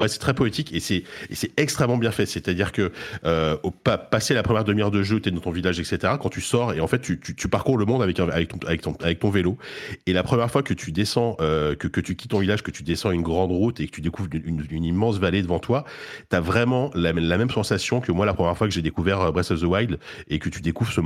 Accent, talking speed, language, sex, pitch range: French, 295 wpm, French, male, 85-110 Hz